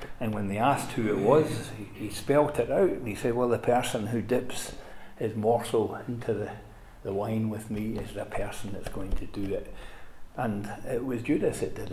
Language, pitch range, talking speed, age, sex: English, 100-120 Hz, 210 wpm, 60-79, male